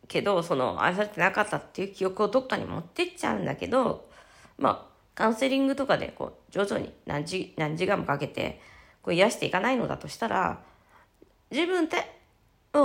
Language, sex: Japanese, female